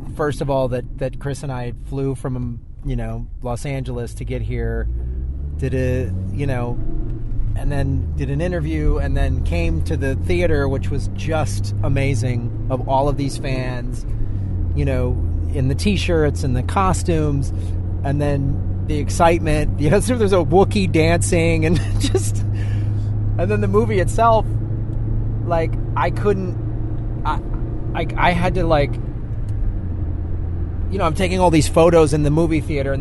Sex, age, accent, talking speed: male, 30-49, American, 160 wpm